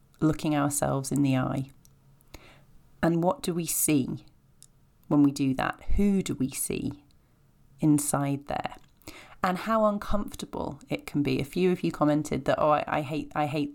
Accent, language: British, English